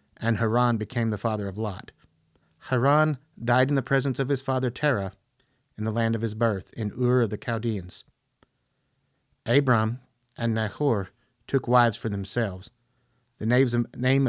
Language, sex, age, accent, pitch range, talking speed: English, male, 50-69, American, 105-130 Hz, 150 wpm